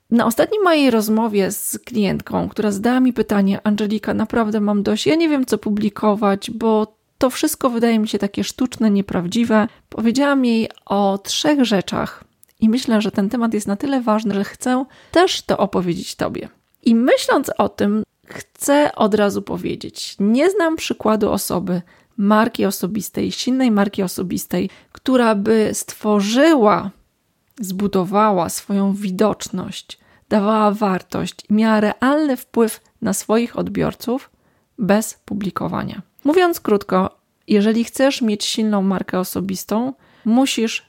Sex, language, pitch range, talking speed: female, Polish, 200-245 Hz, 135 wpm